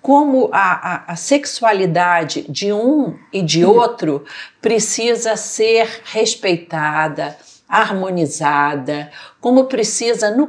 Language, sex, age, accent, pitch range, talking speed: Portuguese, female, 50-69, Brazilian, 160-225 Hz, 95 wpm